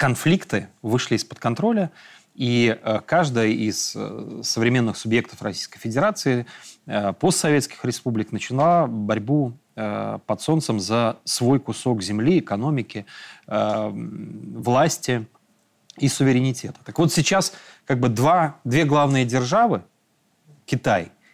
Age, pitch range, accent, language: 30-49, 115-155 Hz, native, Russian